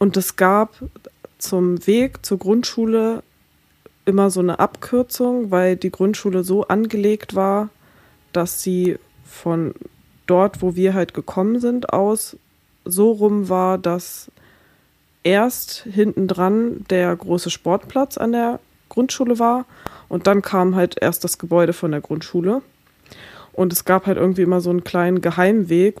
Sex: female